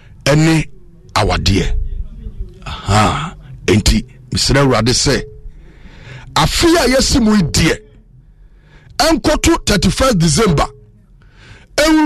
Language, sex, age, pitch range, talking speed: English, male, 50-69, 125-175 Hz, 80 wpm